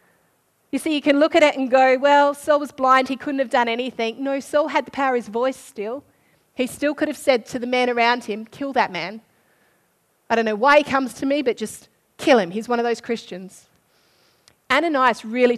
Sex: female